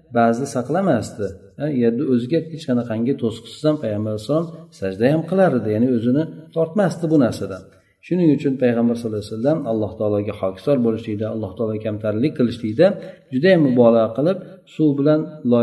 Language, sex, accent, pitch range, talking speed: Russian, male, Turkish, 115-145 Hz, 165 wpm